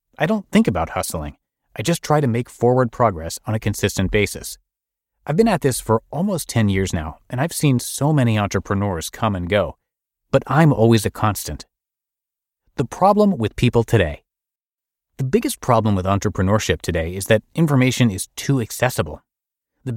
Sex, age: male, 30-49